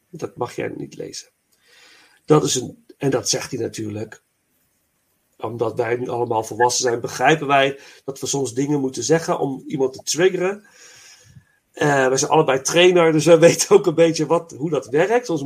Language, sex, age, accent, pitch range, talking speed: Dutch, male, 40-59, Dutch, 125-165 Hz, 165 wpm